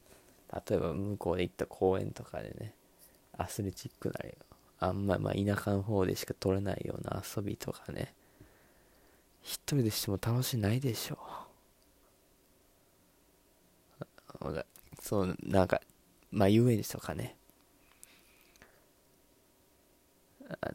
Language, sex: Japanese, male